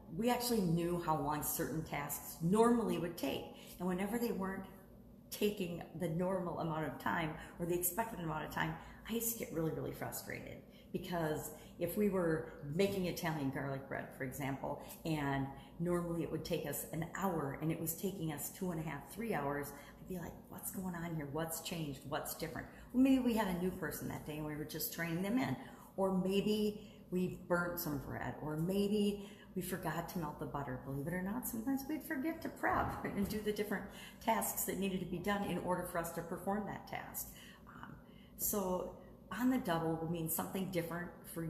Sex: female